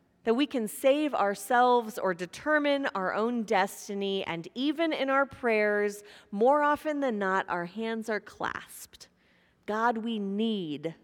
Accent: American